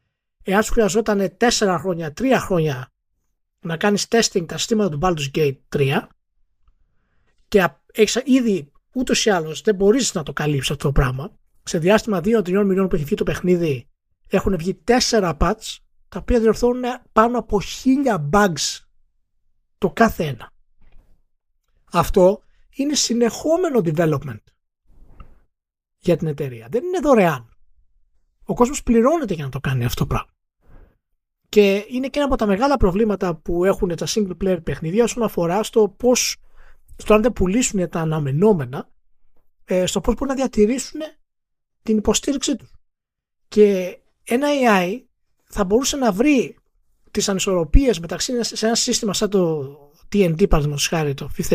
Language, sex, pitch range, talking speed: Greek, male, 155-230 Hz, 145 wpm